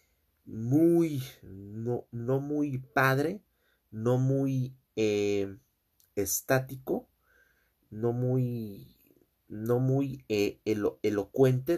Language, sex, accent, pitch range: Spanish, male, Mexican, 105-135 Hz